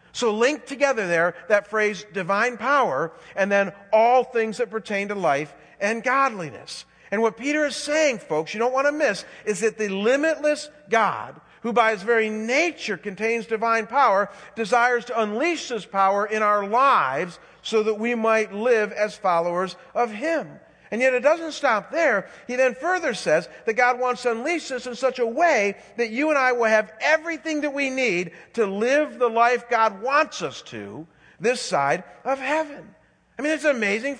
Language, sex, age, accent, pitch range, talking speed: English, male, 50-69, American, 210-280 Hz, 185 wpm